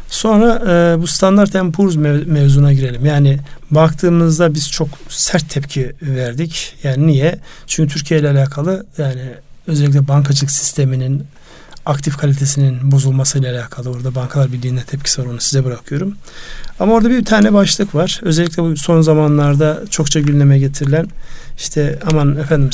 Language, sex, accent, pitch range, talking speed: Turkish, male, native, 140-165 Hz, 135 wpm